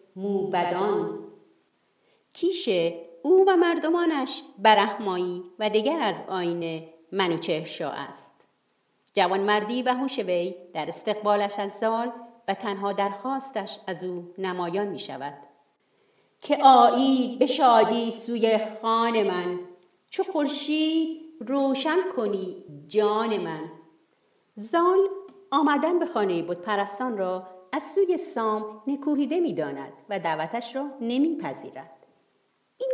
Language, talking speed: Persian, 100 wpm